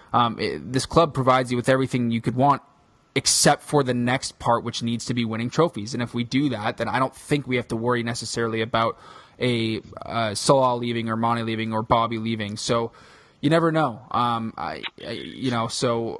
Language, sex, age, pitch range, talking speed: English, male, 20-39, 115-135 Hz, 210 wpm